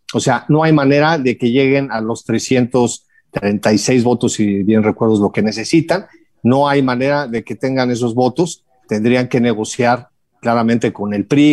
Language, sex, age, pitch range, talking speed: Spanish, male, 50-69, 115-150 Hz, 170 wpm